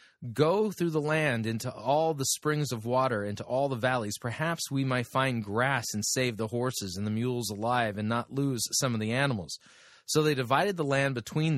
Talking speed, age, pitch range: 205 wpm, 30-49, 110-135 Hz